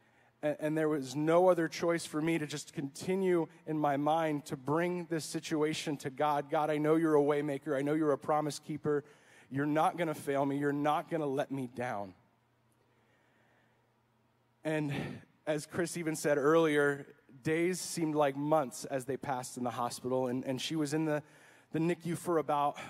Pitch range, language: 130-155 Hz, English